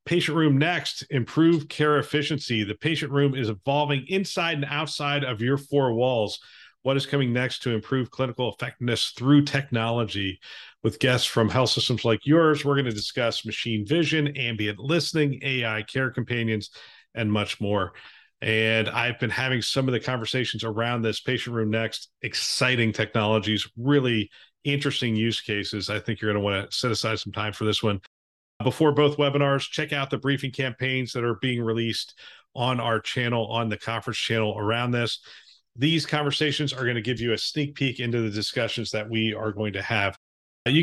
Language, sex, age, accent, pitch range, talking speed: English, male, 40-59, American, 110-140 Hz, 175 wpm